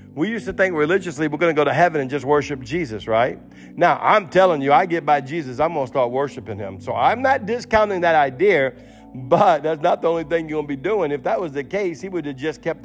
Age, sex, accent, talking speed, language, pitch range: 50-69, male, American, 265 wpm, English, 145-190 Hz